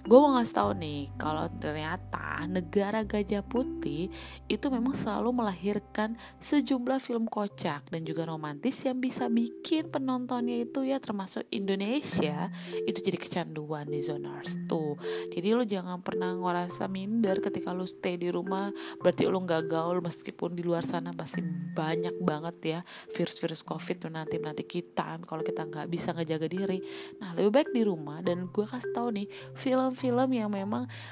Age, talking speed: 20-39, 155 wpm